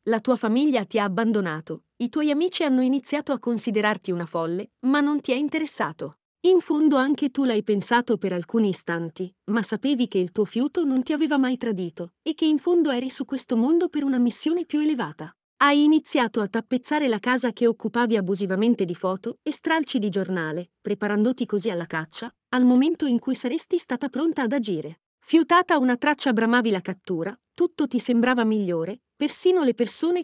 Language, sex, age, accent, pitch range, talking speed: Italian, female, 40-59, native, 205-290 Hz, 185 wpm